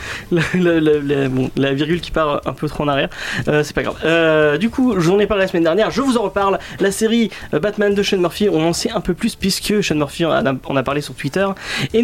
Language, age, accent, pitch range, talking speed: French, 30-49, French, 140-185 Hz, 270 wpm